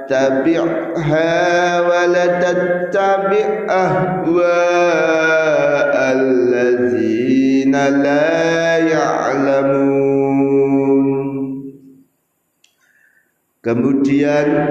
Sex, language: male, Indonesian